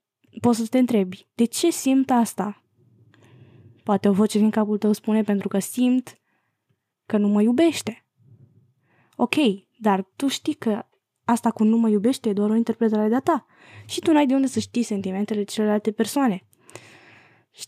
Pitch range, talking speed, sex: 205-270 Hz, 170 wpm, female